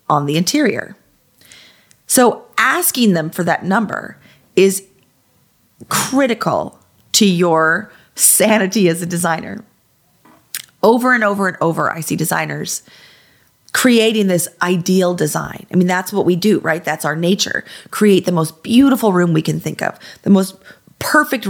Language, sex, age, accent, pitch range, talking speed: English, female, 40-59, American, 170-215 Hz, 140 wpm